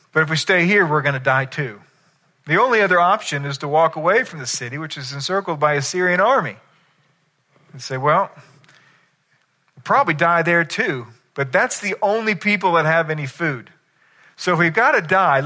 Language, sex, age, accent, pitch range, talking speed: English, male, 40-59, American, 150-220 Hz, 200 wpm